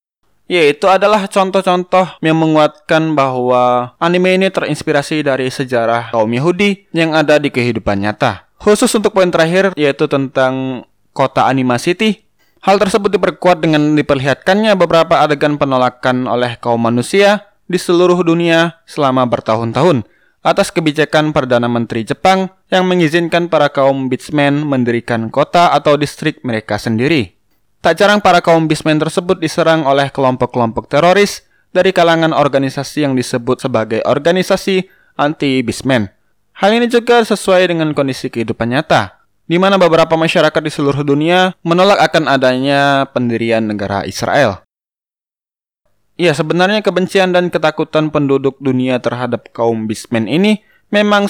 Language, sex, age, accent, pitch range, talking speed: Indonesian, male, 20-39, native, 130-180 Hz, 130 wpm